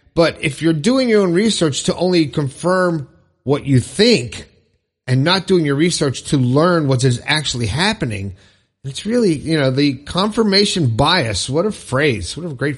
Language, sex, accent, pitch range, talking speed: English, male, American, 135-185 Hz, 175 wpm